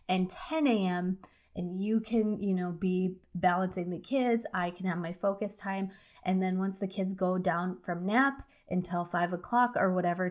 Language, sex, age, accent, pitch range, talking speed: English, female, 20-39, American, 180-200 Hz, 185 wpm